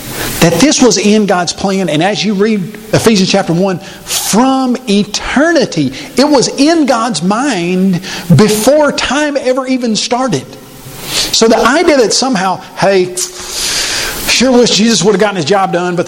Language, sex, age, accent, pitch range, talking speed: English, male, 50-69, American, 165-215 Hz, 155 wpm